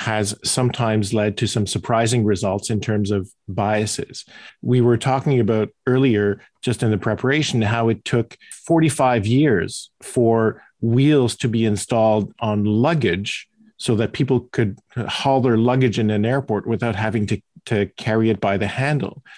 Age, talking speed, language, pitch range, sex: 50-69, 160 wpm, English, 110-130 Hz, male